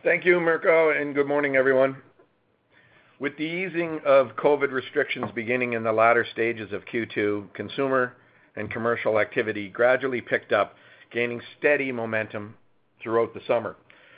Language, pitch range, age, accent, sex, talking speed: English, 110-140 Hz, 50-69, American, male, 140 wpm